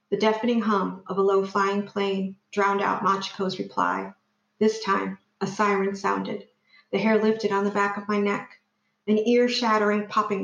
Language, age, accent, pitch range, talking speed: English, 50-69, American, 195-225 Hz, 165 wpm